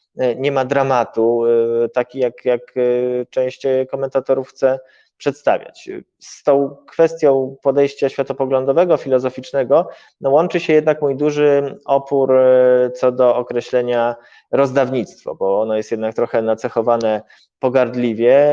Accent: native